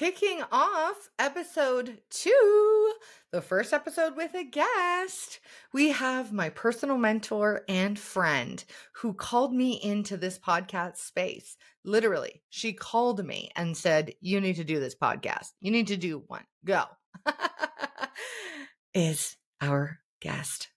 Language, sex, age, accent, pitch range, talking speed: English, female, 30-49, American, 175-285 Hz, 130 wpm